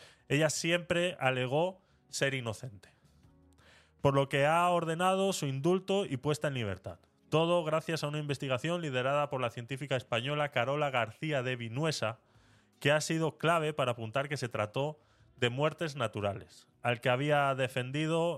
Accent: Spanish